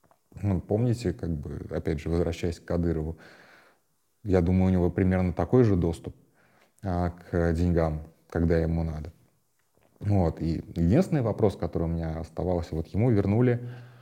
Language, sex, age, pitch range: Russian, male, 30-49, 85-105 Hz